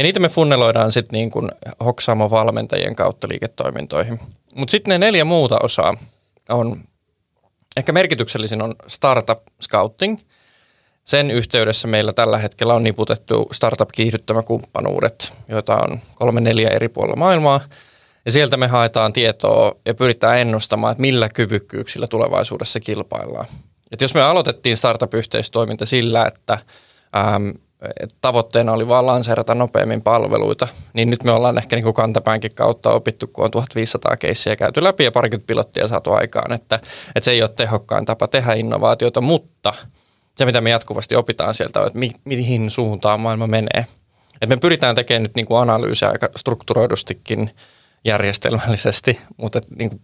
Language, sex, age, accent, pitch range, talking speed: Finnish, male, 20-39, native, 110-125 Hz, 150 wpm